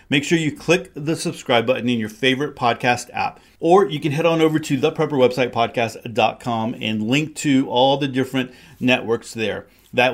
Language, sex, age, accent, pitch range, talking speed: English, male, 40-59, American, 115-150 Hz, 170 wpm